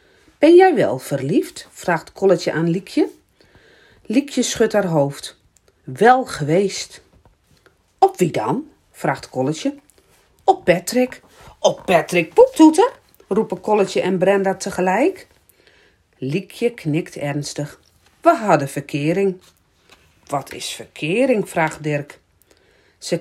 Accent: Dutch